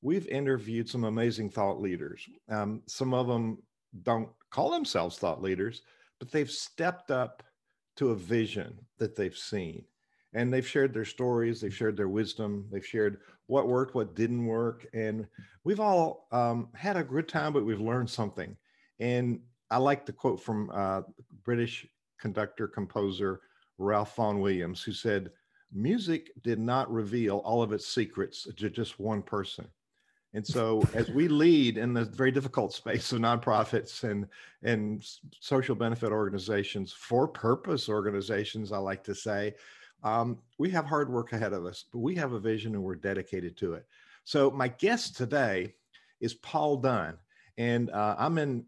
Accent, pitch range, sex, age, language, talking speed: American, 105-130 Hz, male, 50-69, English, 165 wpm